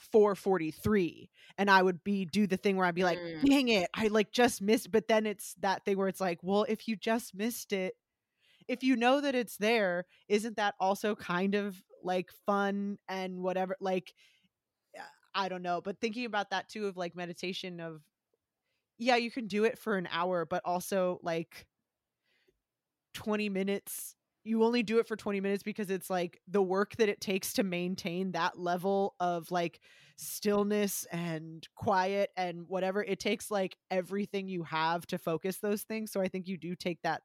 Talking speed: 185 wpm